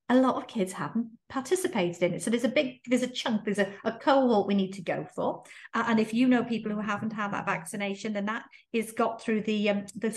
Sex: female